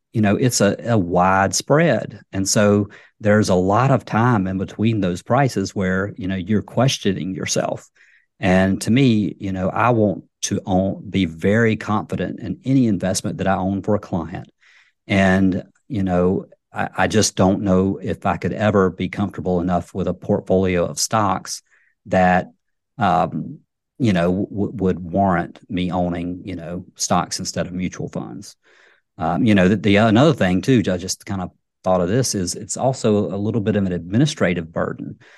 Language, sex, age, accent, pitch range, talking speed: English, male, 50-69, American, 90-110 Hz, 175 wpm